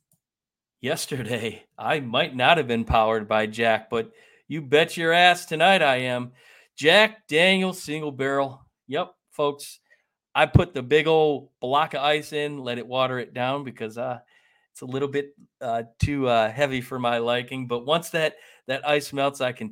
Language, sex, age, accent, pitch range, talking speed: English, male, 40-59, American, 125-160 Hz, 175 wpm